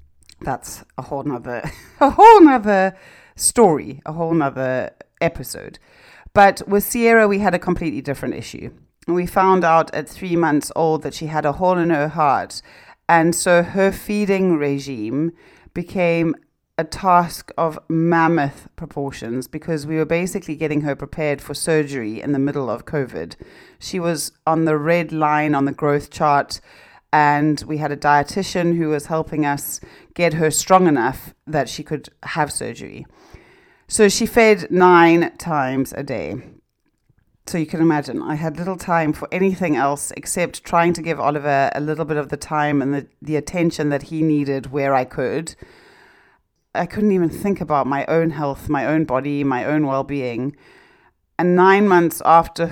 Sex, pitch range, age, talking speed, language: female, 145-175 Hz, 40-59, 165 wpm, English